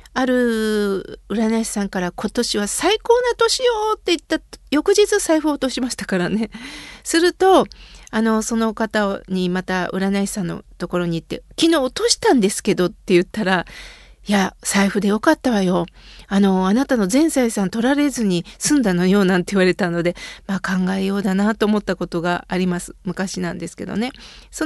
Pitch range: 210-330 Hz